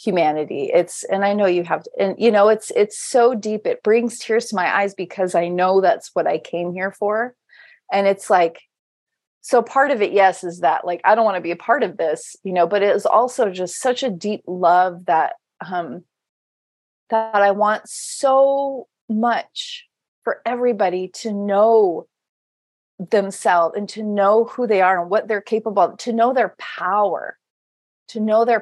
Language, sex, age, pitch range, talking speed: English, female, 30-49, 190-235 Hz, 190 wpm